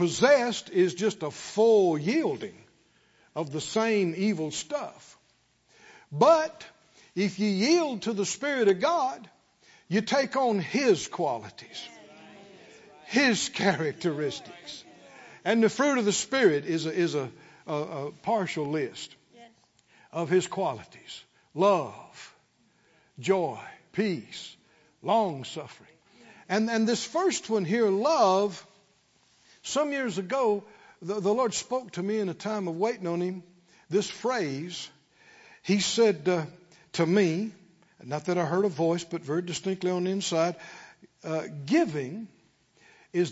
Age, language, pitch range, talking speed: 60-79, English, 165-225 Hz, 125 wpm